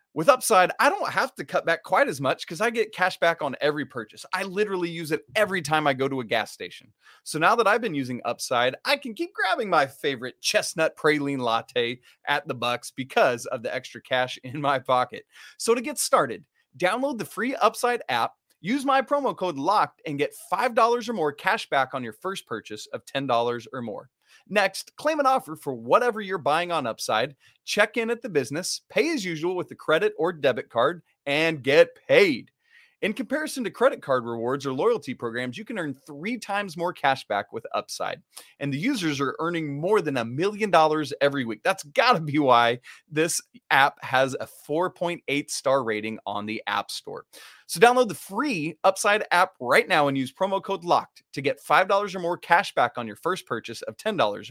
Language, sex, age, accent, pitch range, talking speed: English, male, 30-49, American, 135-220 Hz, 205 wpm